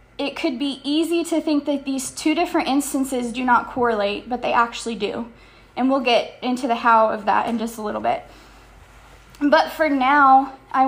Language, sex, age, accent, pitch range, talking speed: English, female, 10-29, American, 240-285 Hz, 195 wpm